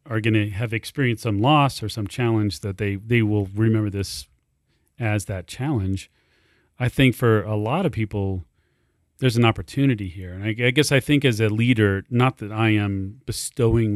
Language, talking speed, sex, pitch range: English, 190 wpm, male, 100-125 Hz